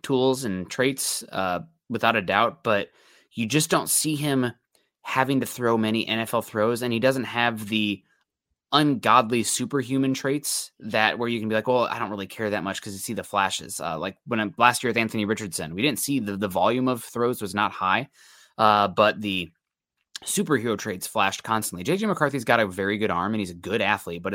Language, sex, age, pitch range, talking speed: English, male, 20-39, 100-130 Hz, 210 wpm